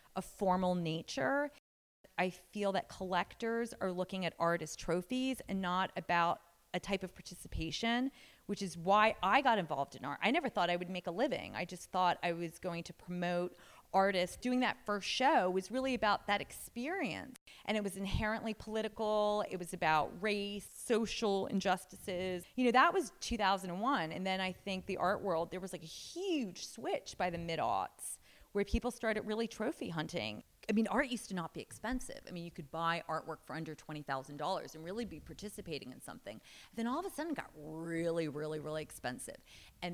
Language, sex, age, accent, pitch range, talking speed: English, female, 30-49, American, 170-220 Hz, 190 wpm